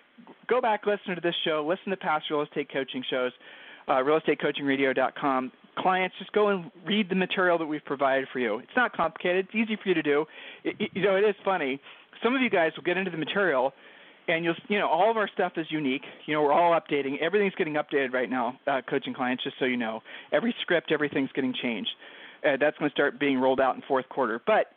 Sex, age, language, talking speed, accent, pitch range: male, 40-59, English, 230 wpm, American, 140-190 Hz